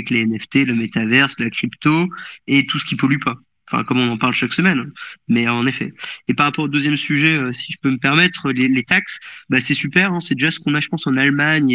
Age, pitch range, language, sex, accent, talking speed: 20-39, 130-155 Hz, French, male, French, 250 wpm